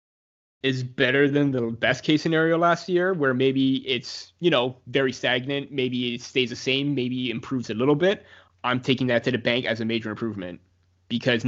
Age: 20-39